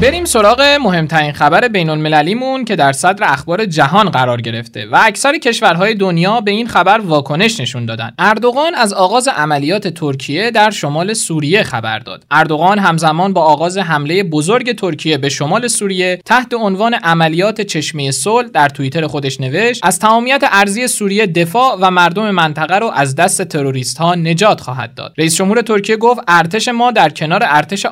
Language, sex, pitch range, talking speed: Persian, male, 150-225 Hz, 165 wpm